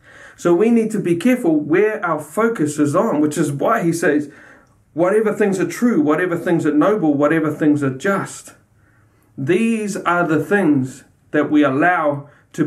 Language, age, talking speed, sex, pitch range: English, 40-59, 170 wpm, male, 145-190 Hz